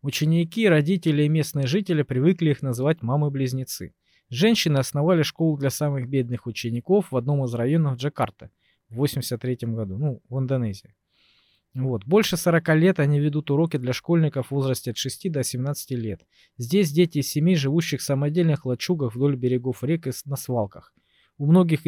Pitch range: 125-165 Hz